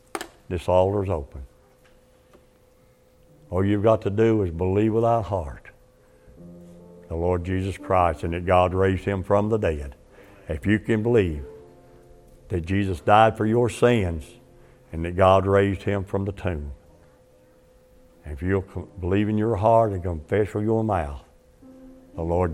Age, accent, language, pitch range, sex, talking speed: 60-79, American, English, 85-105 Hz, male, 150 wpm